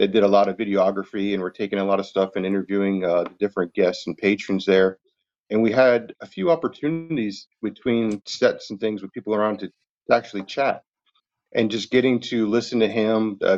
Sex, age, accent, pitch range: male, 40-59, American, 95-110 Hz